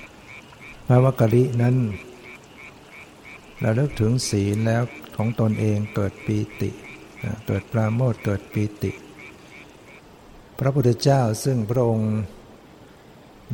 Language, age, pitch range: Thai, 60-79, 105-120 Hz